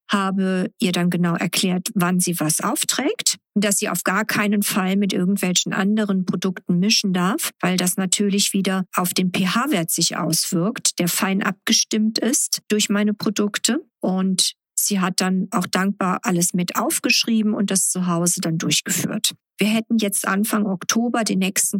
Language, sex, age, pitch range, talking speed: German, female, 50-69, 180-215 Hz, 160 wpm